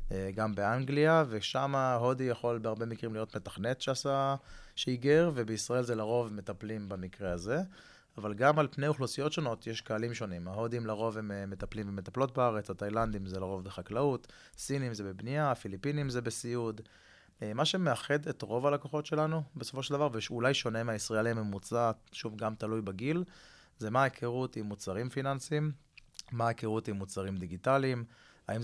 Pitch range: 105-135 Hz